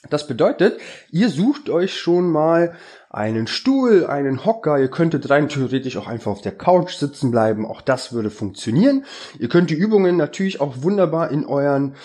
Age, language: 20-39, German